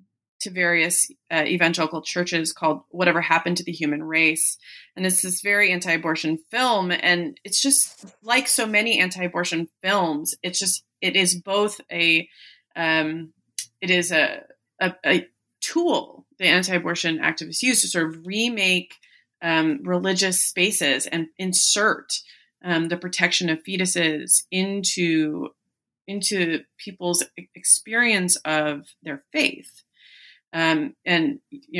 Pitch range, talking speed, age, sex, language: 160-195 Hz, 125 wpm, 20-39, female, English